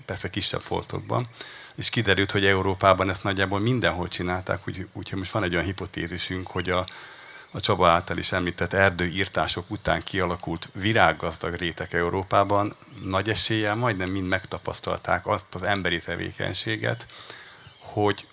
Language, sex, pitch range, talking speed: Hungarian, male, 85-100 Hz, 130 wpm